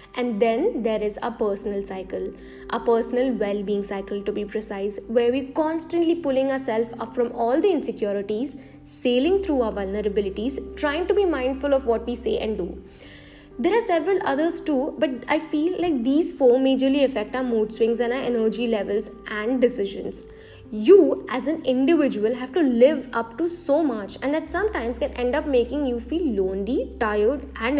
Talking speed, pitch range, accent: 180 wpm, 220-290 Hz, Indian